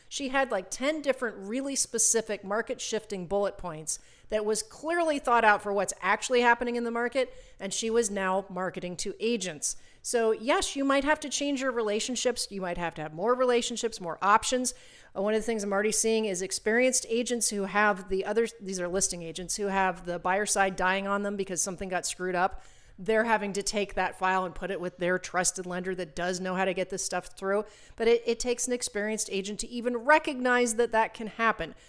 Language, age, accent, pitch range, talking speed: English, 40-59, American, 195-240 Hz, 215 wpm